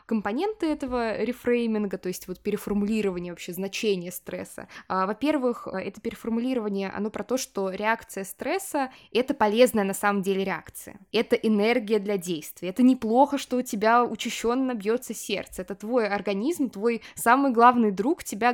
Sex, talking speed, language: female, 145 wpm, Russian